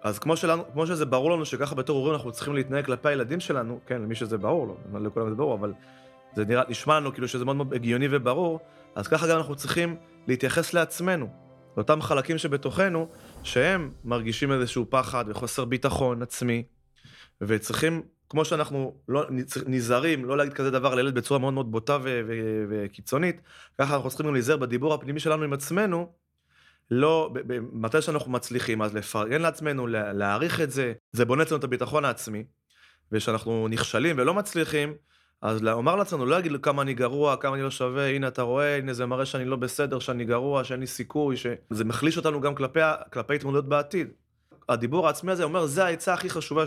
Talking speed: 185 wpm